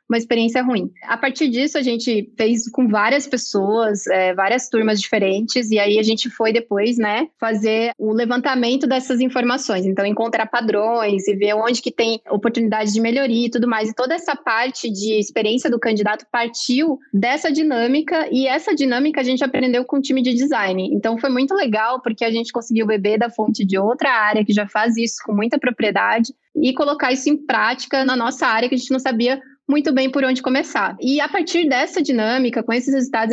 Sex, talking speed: female, 195 wpm